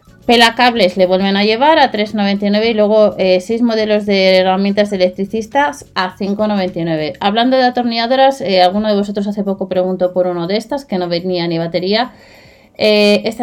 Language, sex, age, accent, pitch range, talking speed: Spanish, female, 30-49, Spanish, 185-235 Hz, 170 wpm